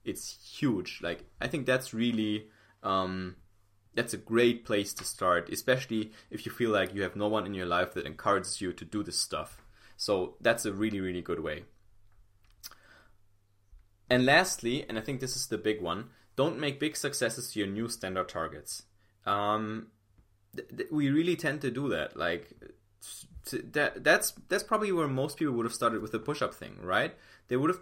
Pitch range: 100-125 Hz